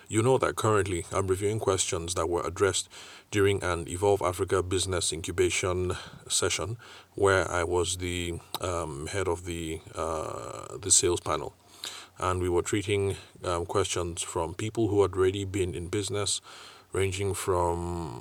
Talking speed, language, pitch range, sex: 150 wpm, English, 90-105 Hz, male